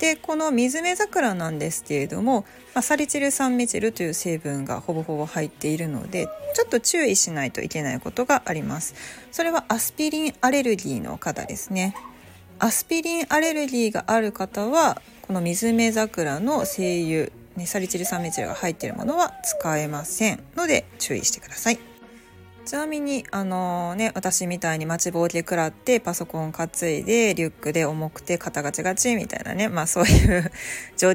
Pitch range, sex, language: 165-255 Hz, female, Japanese